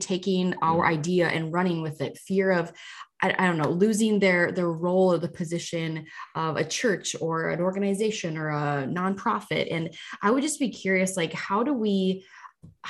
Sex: female